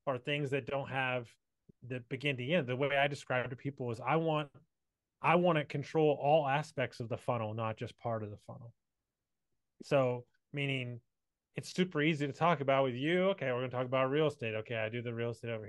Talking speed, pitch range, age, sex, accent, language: 220 wpm, 120-145 Hz, 30-49, male, American, English